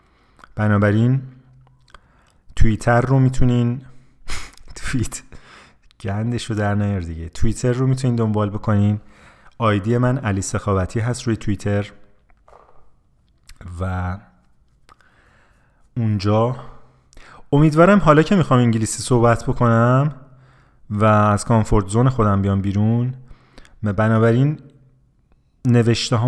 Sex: male